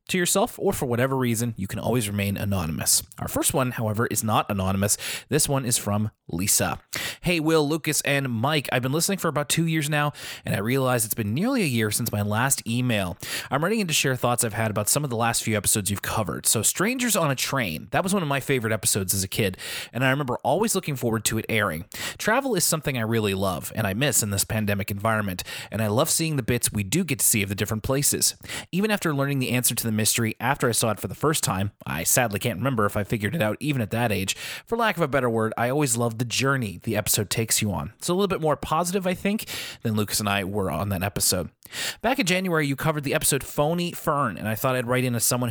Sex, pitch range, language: male, 110-150 Hz, English